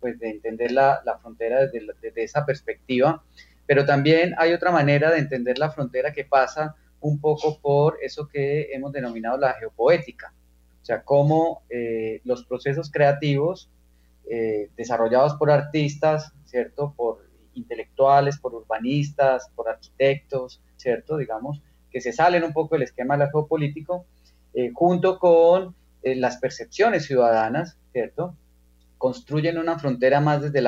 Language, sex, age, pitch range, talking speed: Spanish, male, 30-49, 115-155 Hz, 145 wpm